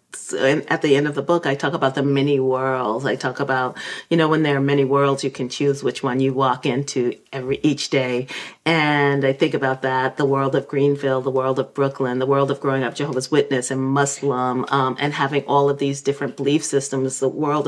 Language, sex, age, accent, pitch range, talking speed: English, female, 40-59, American, 135-160 Hz, 225 wpm